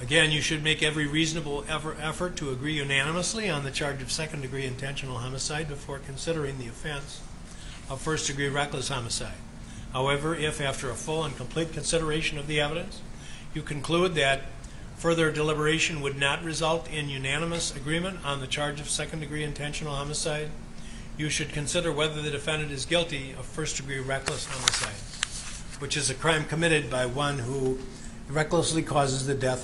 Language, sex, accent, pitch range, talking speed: English, male, American, 130-155 Hz, 165 wpm